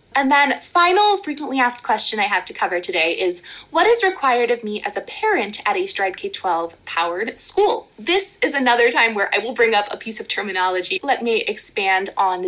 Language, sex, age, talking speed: English, female, 20-39, 210 wpm